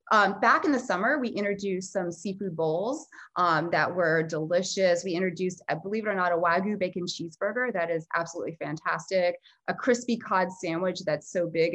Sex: female